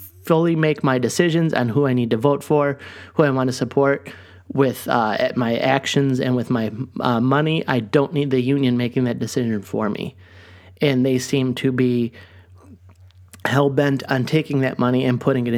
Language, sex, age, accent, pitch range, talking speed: English, male, 30-49, American, 115-140 Hz, 185 wpm